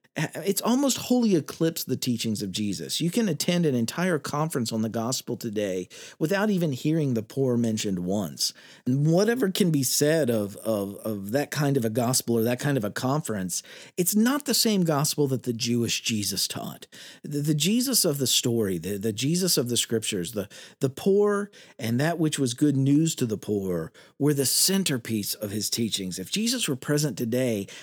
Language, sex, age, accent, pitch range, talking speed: English, male, 50-69, American, 115-170 Hz, 190 wpm